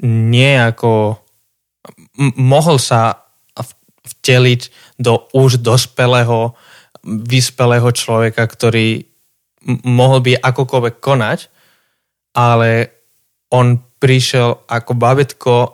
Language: Slovak